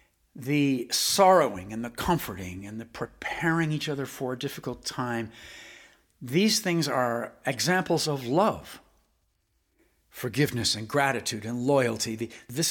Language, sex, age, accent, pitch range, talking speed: English, male, 60-79, American, 130-200 Hz, 125 wpm